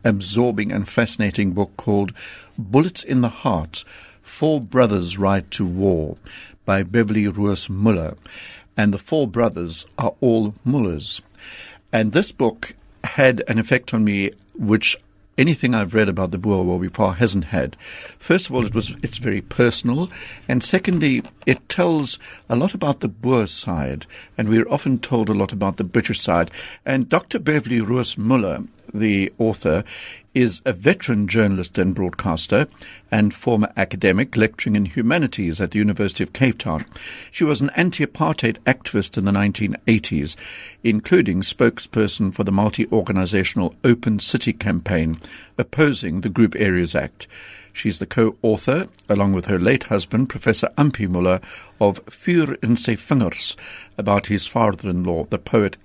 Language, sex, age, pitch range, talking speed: English, male, 60-79, 95-120 Hz, 150 wpm